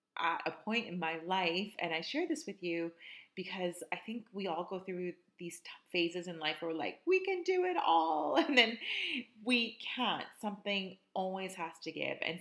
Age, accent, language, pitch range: 30-49, American, English, 160-200 Hz